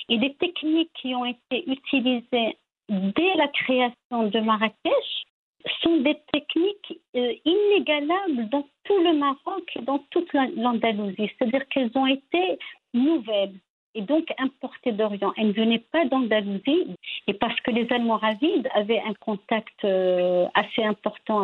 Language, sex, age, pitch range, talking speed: French, female, 50-69, 225-310 Hz, 135 wpm